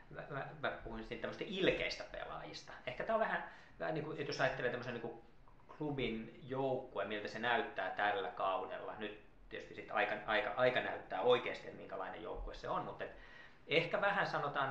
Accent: native